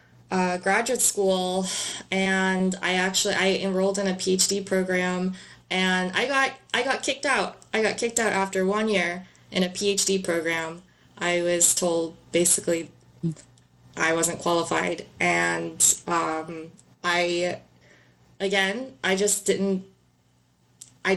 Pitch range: 175-195 Hz